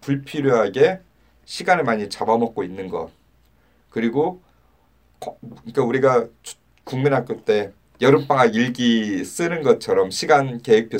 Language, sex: Korean, male